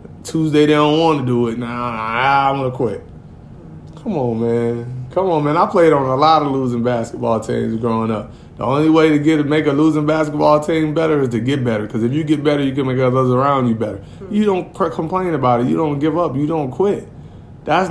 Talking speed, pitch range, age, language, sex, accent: 240 wpm, 125-175 Hz, 20-39, English, male, American